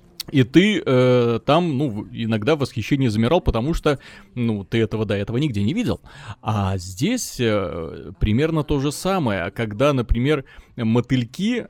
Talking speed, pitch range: 145 wpm, 115-150 Hz